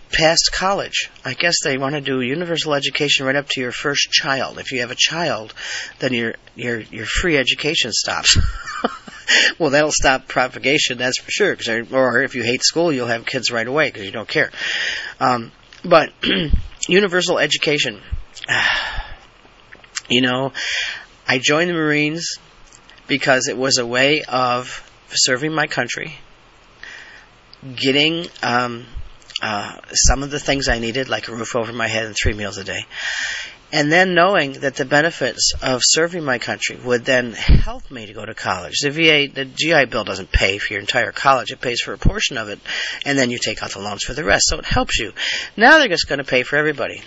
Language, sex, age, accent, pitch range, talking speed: English, male, 40-59, American, 120-145 Hz, 185 wpm